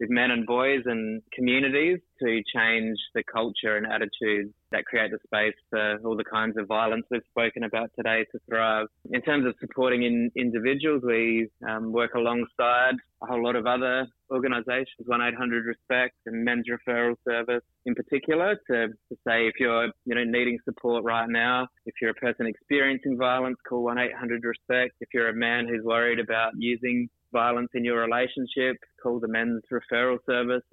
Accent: Australian